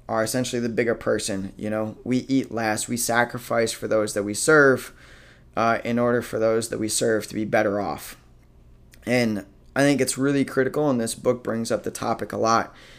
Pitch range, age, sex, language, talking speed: 105-125 Hz, 20-39, male, English, 205 wpm